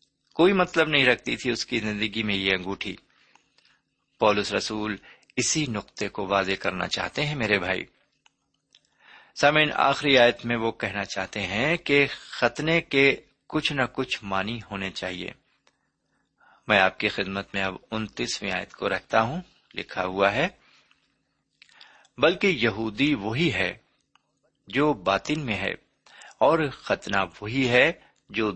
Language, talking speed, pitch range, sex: Urdu, 140 wpm, 100-145 Hz, male